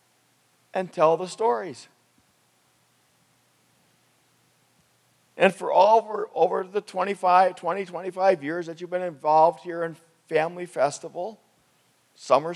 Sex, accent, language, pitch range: male, American, English, 155-195 Hz